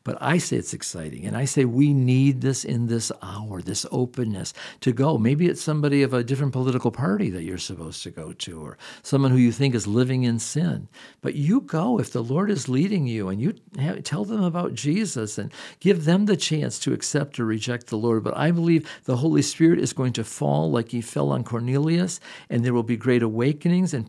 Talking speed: 220 wpm